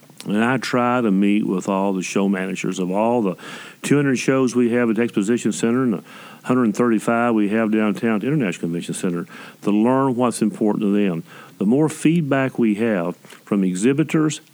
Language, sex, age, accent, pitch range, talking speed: English, male, 50-69, American, 105-125 Hz, 180 wpm